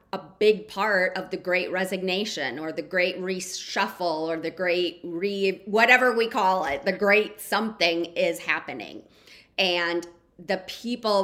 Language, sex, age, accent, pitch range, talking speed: English, female, 30-49, American, 165-190 Hz, 145 wpm